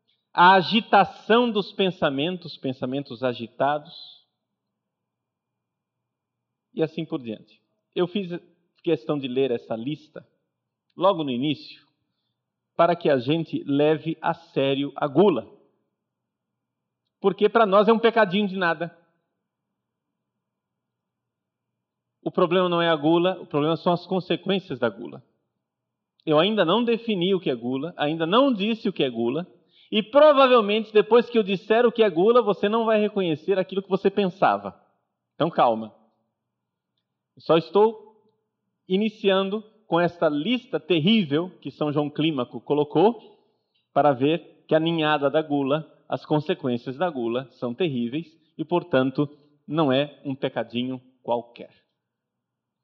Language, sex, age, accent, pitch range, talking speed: Portuguese, male, 40-59, Brazilian, 145-200 Hz, 135 wpm